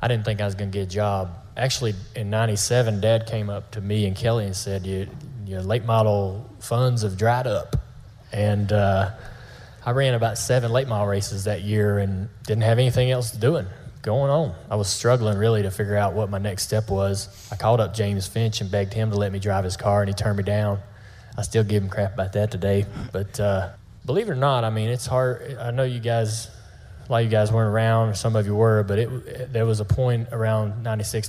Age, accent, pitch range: 20-39, American, 100-115 Hz